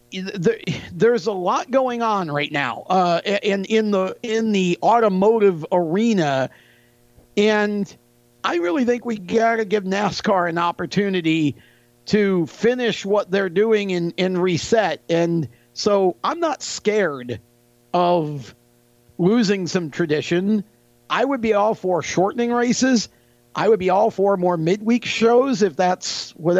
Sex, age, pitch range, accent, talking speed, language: male, 50-69, 165-215 Hz, American, 140 wpm, English